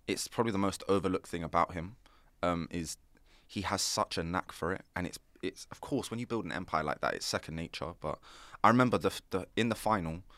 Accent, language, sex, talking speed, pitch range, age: British, English, male, 230 wpm, 80-95 Hz, 20-39